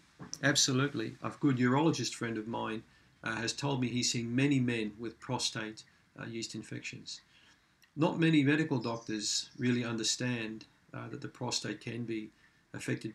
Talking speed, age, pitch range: 135 wpm, 40-59, 115-135 Hz